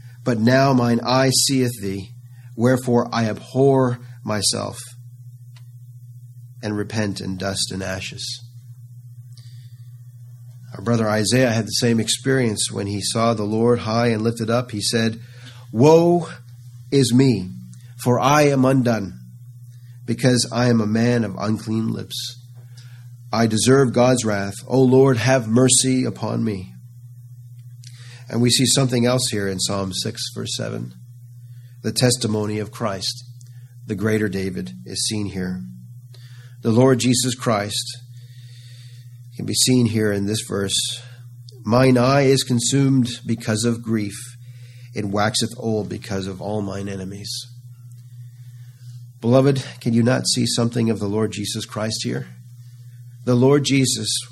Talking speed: 135 wpm